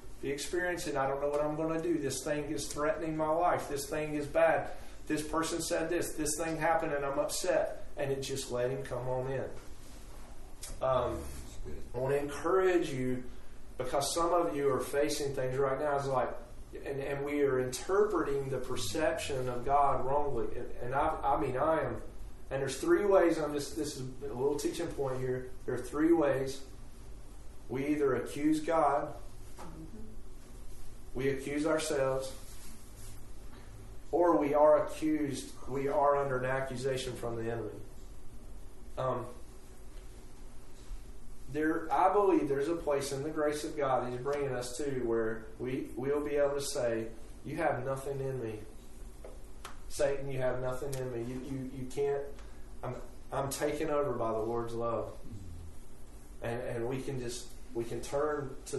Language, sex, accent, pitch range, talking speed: English, male, American, 125-150 Hz, 170 wpm